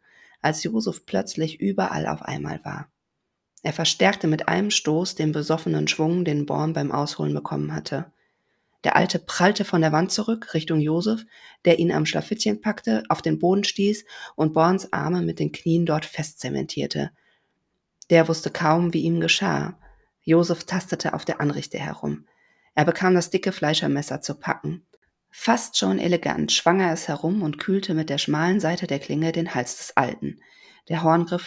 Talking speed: 165 wpm